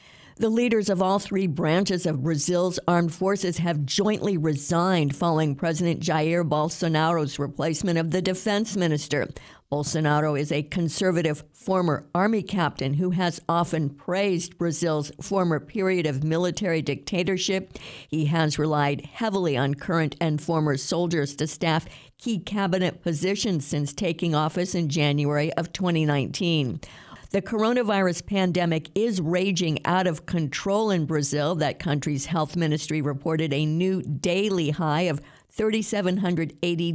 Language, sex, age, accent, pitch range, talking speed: English, female, 50-69, American, 150-185 Hz, 130 wpm